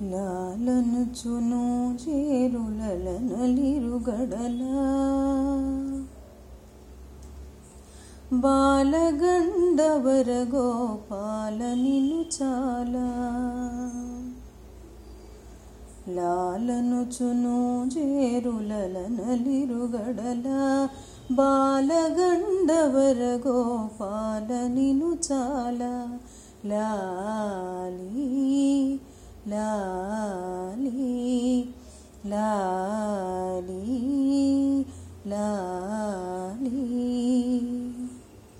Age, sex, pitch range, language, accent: 30-49, female, 215-275 Hz, Telugu, native